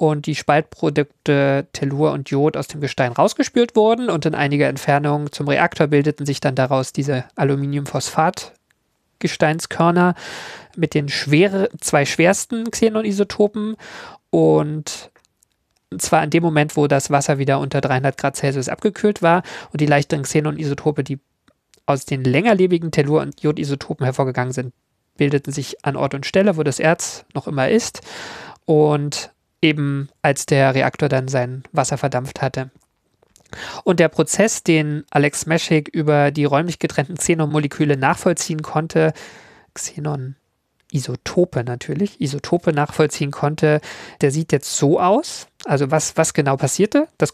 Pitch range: 140-165 Hz